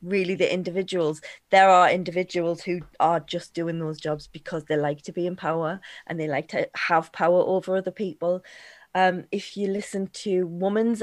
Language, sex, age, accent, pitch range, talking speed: English, female, 20-39, British, 175-200 Hz, 185 wpm